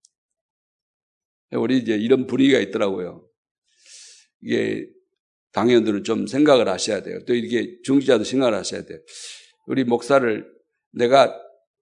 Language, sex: Korean, male